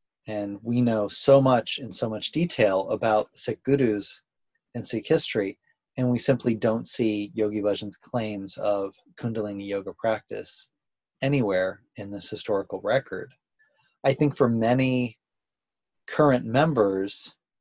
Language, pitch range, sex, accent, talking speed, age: English, 105-130 Hz, male, American, 130 wpm, 30-49